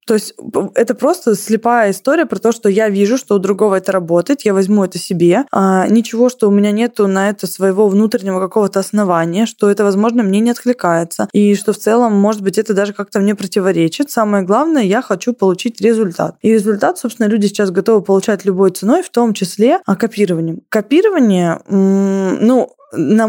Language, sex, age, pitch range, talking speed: Russian, female, 20-39, 195-230 Hz, 185 wpm